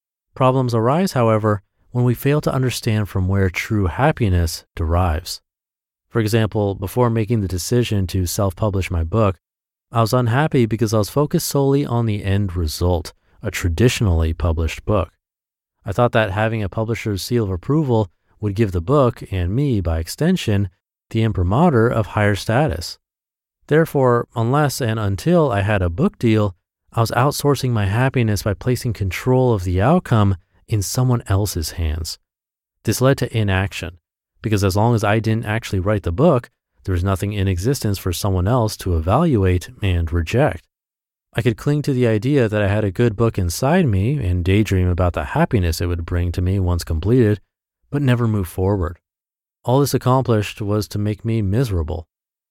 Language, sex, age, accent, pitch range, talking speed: English, male, 30-49, American, 95-120 Hz, 170 wpm